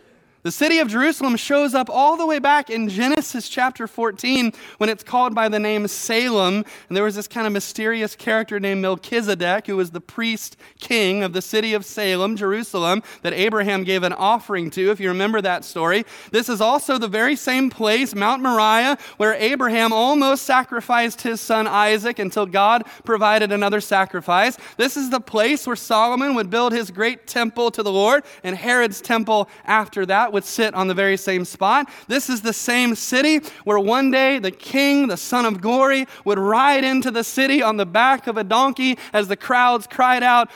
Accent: American